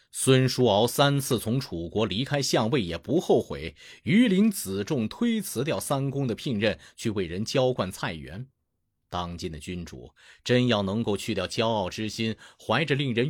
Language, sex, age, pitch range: Chinese, male, 30-49, 95-155 Hz